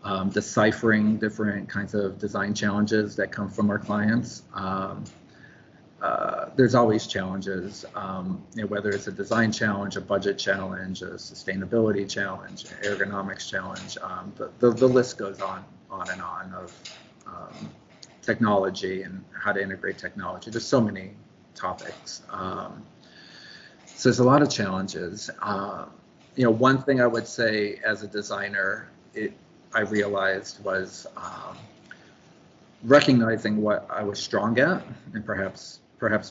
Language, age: English, 40-59